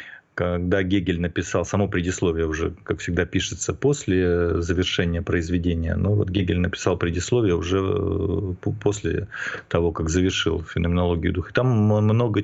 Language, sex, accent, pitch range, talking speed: Russian, male, native, 90-105 Hz, 125 wpm